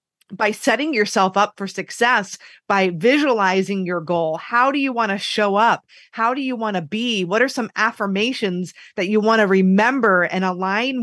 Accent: American